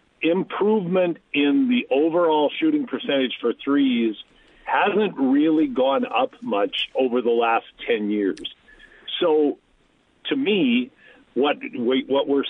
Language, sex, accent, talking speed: English, male, American, 115 wpm